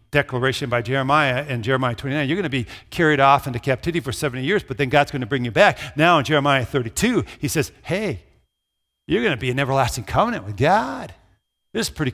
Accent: American